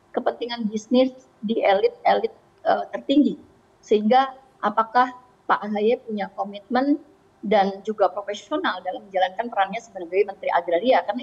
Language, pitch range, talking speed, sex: Indonesian, 200-260 Hz, 120 wpm, female